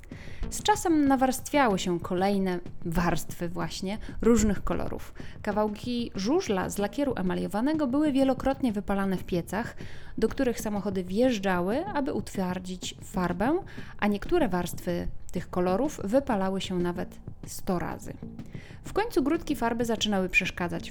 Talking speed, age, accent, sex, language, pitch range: 120 wpm, 30-49, native, female, Polish, 180-240 Hz